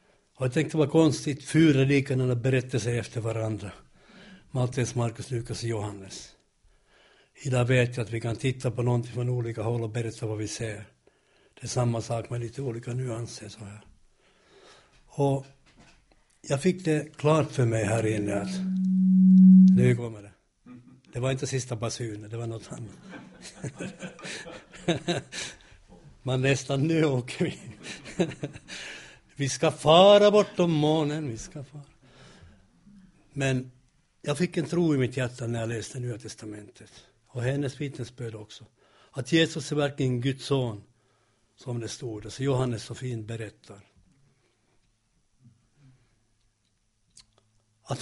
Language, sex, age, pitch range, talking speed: Swedish, male, 60-79, 115-140 Hz, 140 wpm